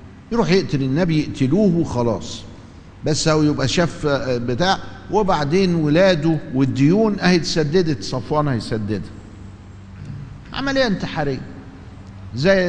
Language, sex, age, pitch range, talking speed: Arabic, male, 50-69, 100-165 Hz, 95 wpm